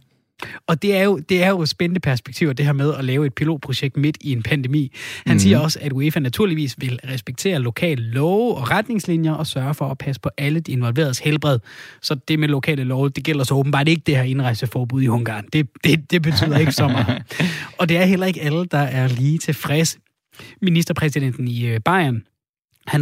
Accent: native